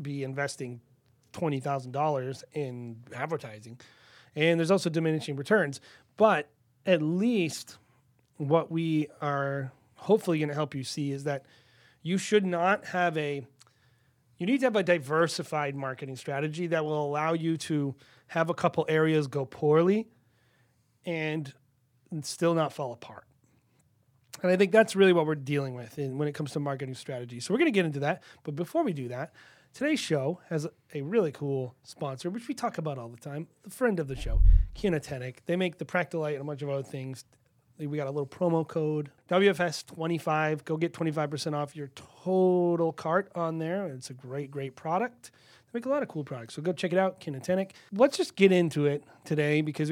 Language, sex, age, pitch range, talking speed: English, male, 30-49, 135-175 Hz, 185 wpm